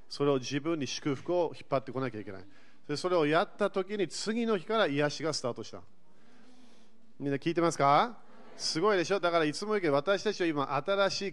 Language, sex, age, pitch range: Japanese, male, 40-59, 140-210 Hz